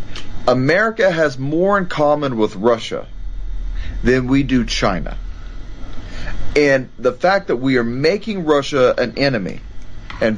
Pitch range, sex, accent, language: 105-150 Hz, male, American, English